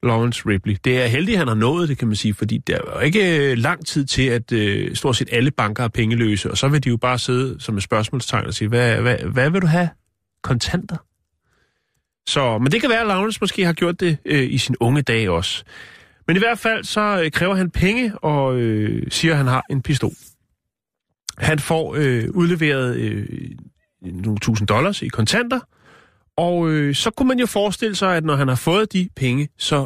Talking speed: 215 wpm